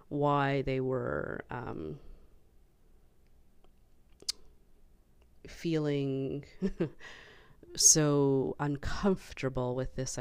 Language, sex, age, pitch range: English, female, 30-49, 115-145 Hz